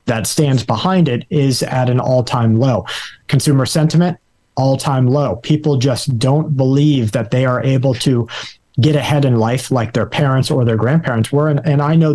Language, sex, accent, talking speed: English, male, American, 185 wpm